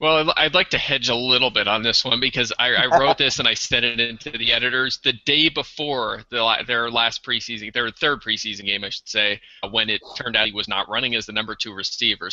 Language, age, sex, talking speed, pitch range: English, 20-39, male, 245 wpm, 100-115 Hz